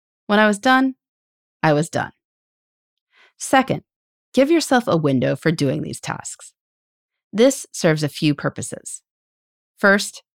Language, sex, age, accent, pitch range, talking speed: English, female, 30-49, American, 145-230 Hz, 125 wpm